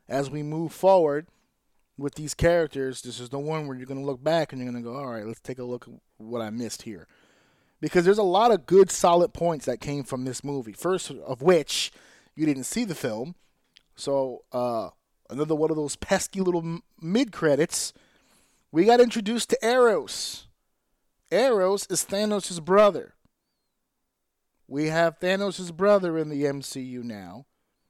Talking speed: 170 wpm